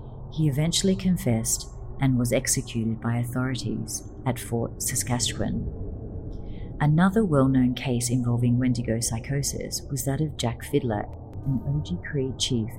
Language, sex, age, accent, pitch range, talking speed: English, female, 40-59, Australian, 115-135 Hz, 120 wpm